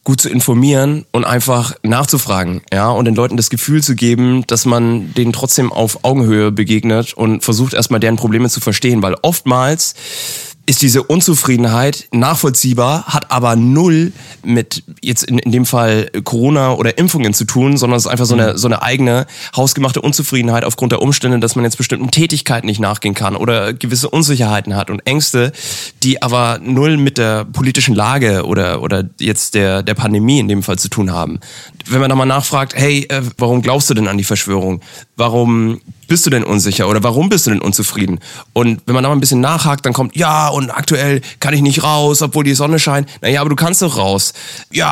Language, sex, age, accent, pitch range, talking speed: German, male, 20-39, German, 115-145 Hz, 195 wpm